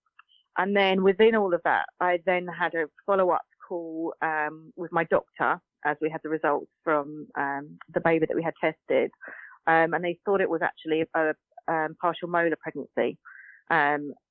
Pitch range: 155-180 Hz